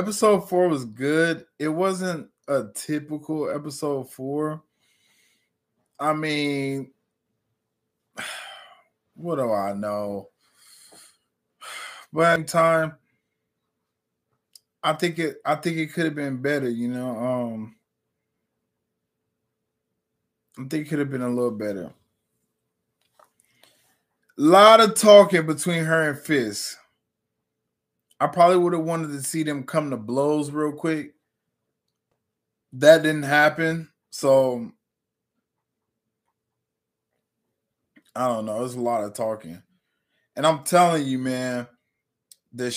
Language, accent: English, American